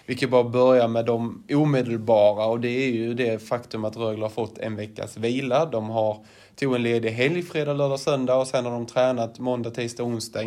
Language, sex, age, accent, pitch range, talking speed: Swedish, male, 20-39, native, 110-125 Hz, 225 wpm